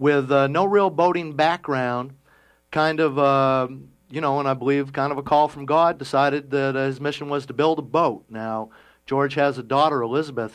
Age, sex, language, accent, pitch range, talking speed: 50-69, male, English, American, 115-145 Hz, 205 wpm